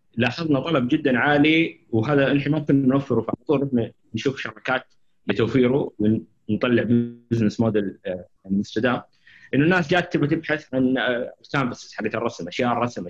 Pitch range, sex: 115-150 Hz, male